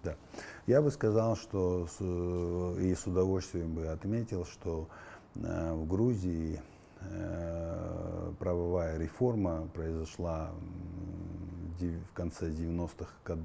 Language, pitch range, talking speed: Russian, 80-100 Hz, 85 wpm